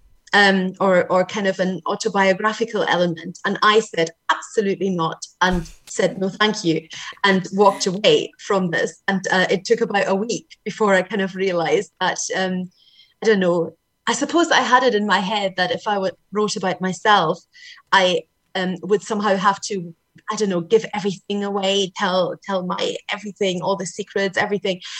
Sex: female